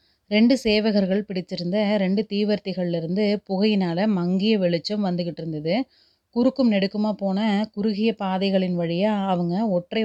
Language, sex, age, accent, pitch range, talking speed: Tamil, female, 30-49, native, 180-210 Hz, 105 wpm